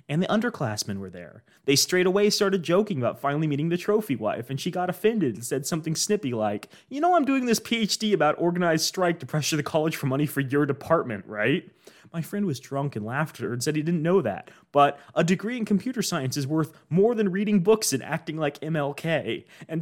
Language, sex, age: English, male, 30-49